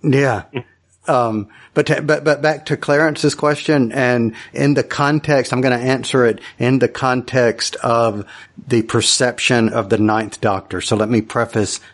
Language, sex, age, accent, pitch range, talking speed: English, male, 50-69, American, 105-120 Hz, 165 wpm